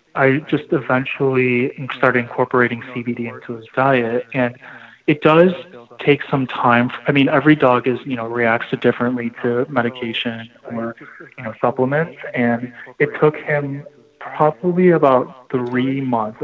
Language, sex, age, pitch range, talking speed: English, male, 20-39, 120-135 Hz, 140 wpm